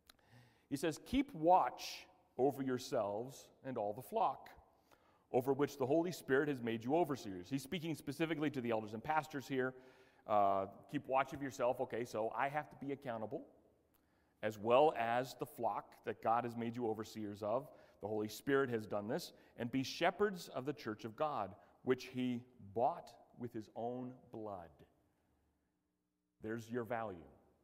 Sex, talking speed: male, 165 wpm